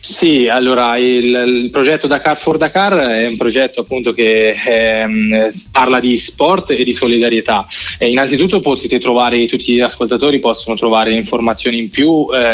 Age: 20-39